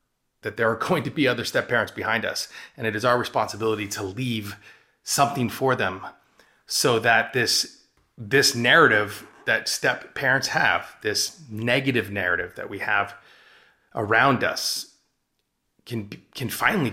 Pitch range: 110-135 Hz